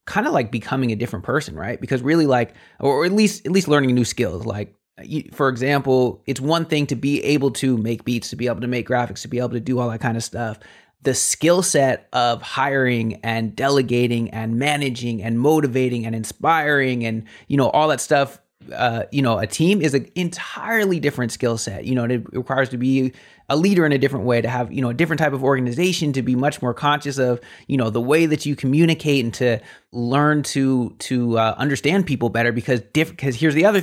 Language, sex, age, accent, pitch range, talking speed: English, male, 30-49, American, 120-150 Hz, 225 wpm